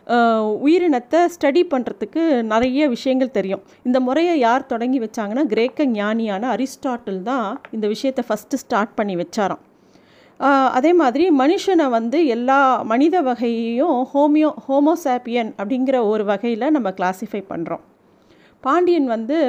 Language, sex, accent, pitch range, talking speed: Tamil, female, native, 225-290 Hz, 115 wpm